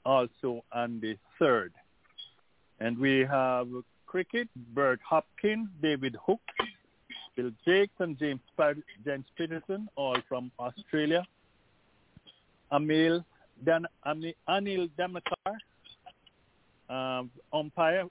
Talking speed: 95 wpm